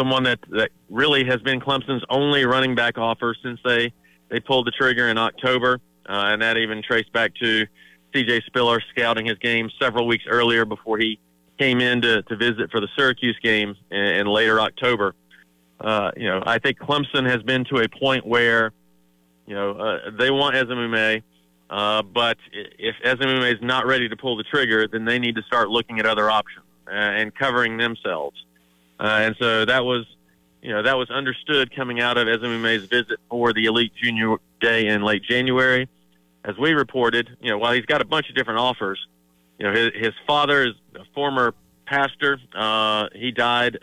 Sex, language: male, English